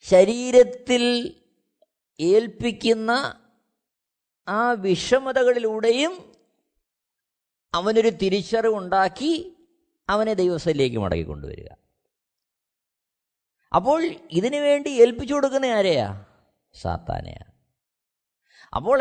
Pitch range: 155-240 Hz